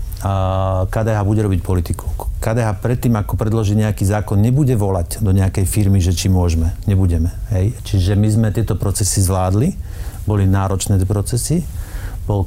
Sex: male